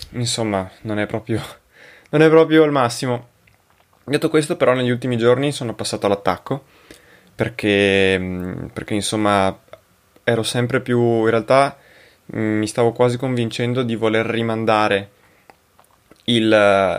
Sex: male